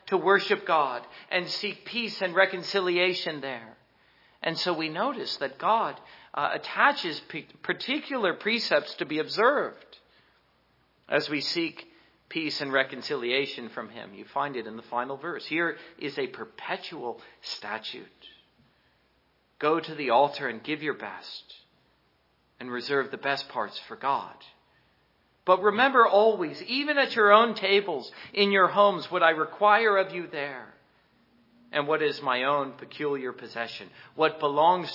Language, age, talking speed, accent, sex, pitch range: English, 50-69, 145 wpm, American, male, 140-195 Hz